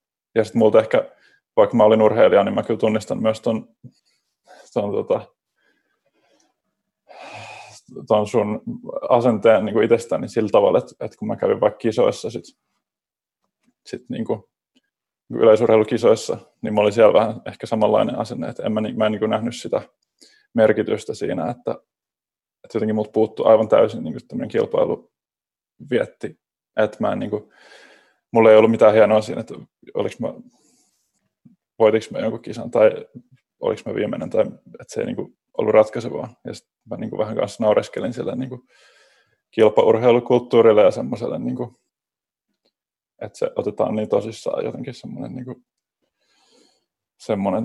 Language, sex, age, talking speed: Finnish, male, 20-39, 150 wpm